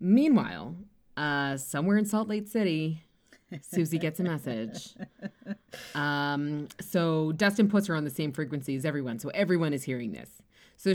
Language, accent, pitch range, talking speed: English, American, 145-200 Hz, 155 wpm